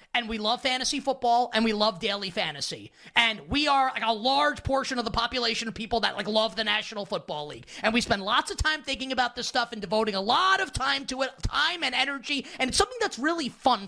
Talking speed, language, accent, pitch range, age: 240 wpm, English, American, 225-290 Hz, 30-49